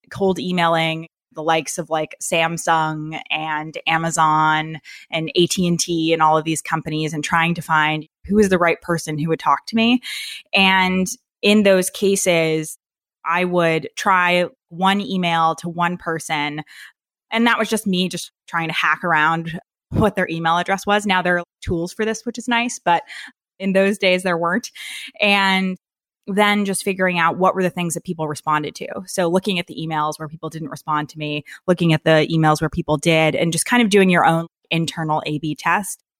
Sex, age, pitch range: female, 20-39, 160-190 Hz